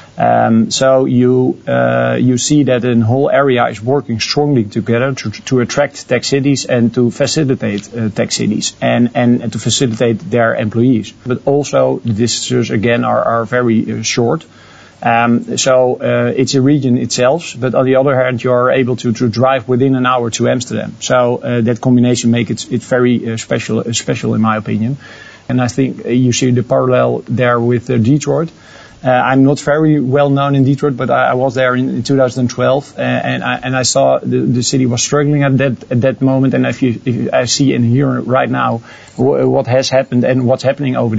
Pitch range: 115-130 Hz